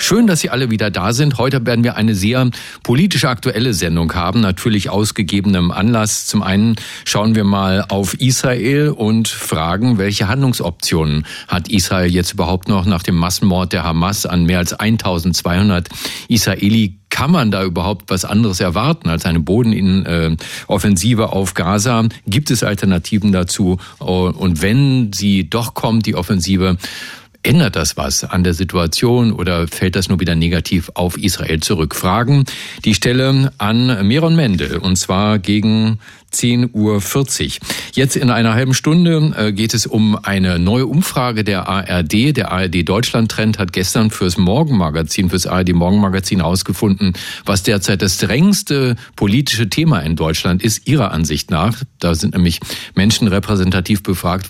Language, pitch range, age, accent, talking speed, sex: German, 95-120 Hz, 40-59, German, 150 wpm, male